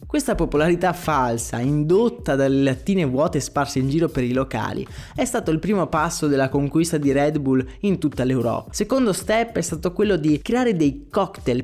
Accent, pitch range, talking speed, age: native, 135-190 Hz, 180 wpm, 20-39